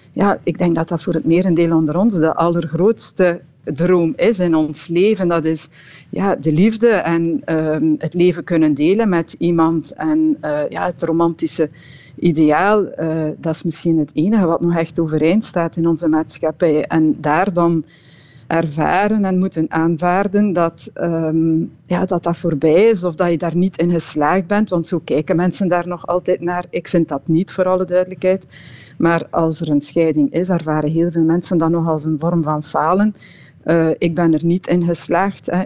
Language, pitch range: Dutch, 160-180 Hz